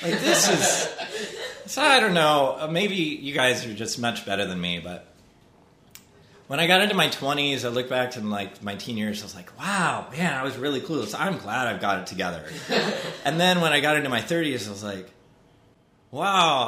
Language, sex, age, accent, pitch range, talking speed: English, male, 30-49, American, 110-150 Hz, 205 wpm